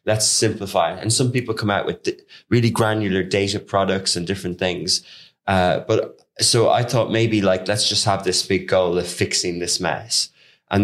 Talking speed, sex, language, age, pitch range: 190 wpm, male, English, 20-39, 90-110 Hz